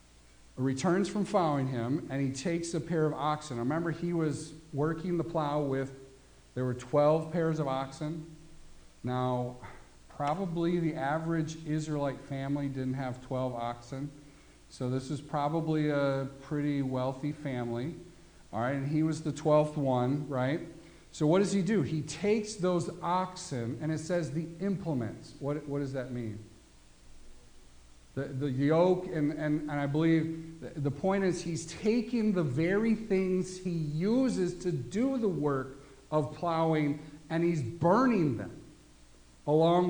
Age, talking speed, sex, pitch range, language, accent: 50-69, 145 wpm, male, 135-175 Hz, English, American